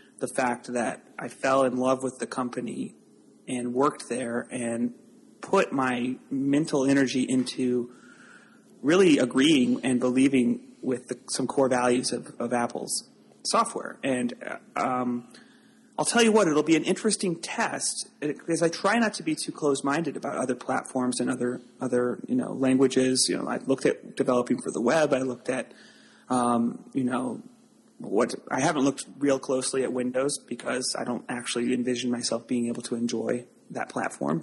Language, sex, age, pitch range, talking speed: English, male, 30-49, 125-200 Hz, 165 wpm